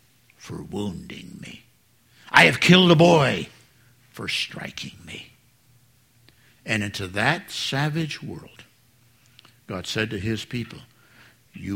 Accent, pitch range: American, 105-125 Hz